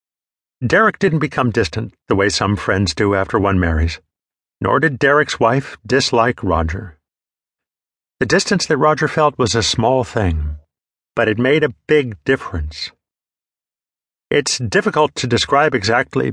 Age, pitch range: 50-69, 85-135 Hz